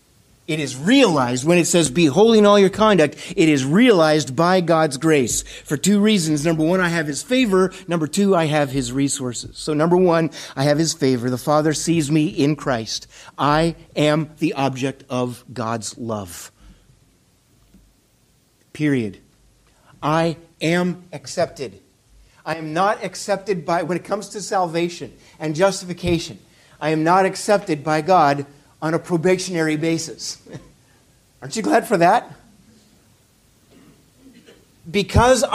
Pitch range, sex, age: 135-185 Hz, male, 50-69